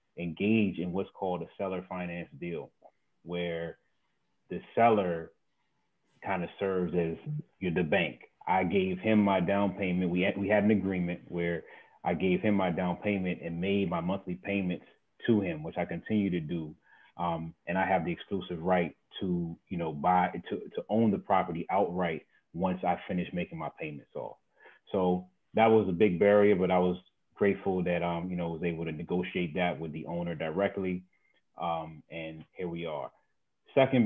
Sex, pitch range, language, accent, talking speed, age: male, 90-100 Hz, English, American, 180 wpm, 30-49